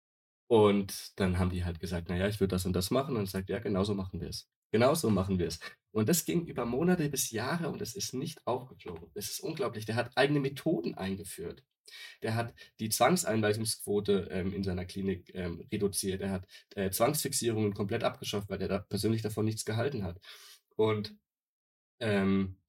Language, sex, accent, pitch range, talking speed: German, male, German, 95-125 Hz, 190 wpm